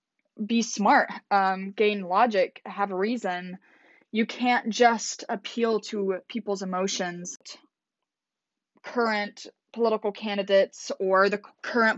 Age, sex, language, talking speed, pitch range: 20-39, female, English, 105 wpm, 190-225 Hz